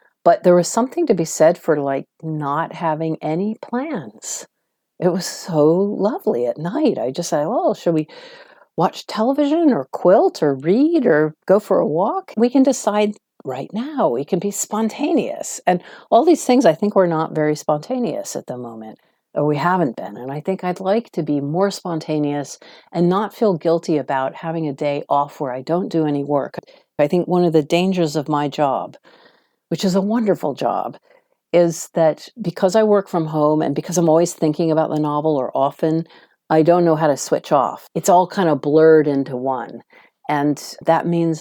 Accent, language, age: American, English, 50-69